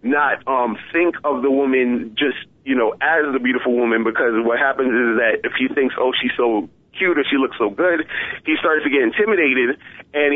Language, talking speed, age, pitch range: English, 210 wpm, 30-49, 120-145 Hz